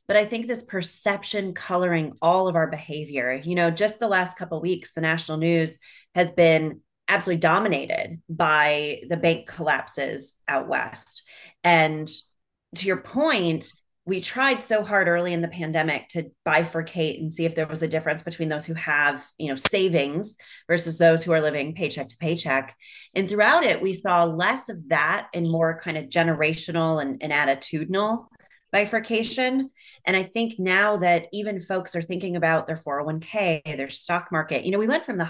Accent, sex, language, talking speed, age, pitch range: American, female, English, 180 wpm, 30-49, 160-200 Hz